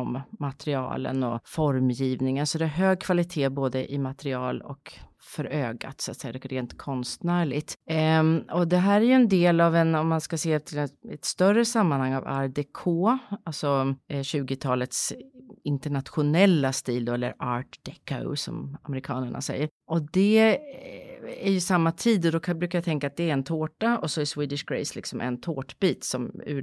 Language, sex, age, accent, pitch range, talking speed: English, female, 30-49, Swedish, 135-175 Hz, 180 wpm